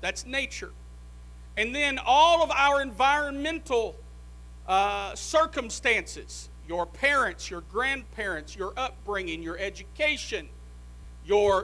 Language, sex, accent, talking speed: English, male, American, 95 wpm